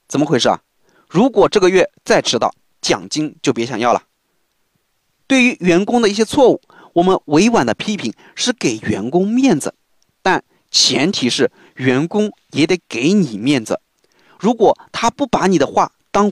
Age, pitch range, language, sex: 30-49, 160-225 Hz, Chinese, male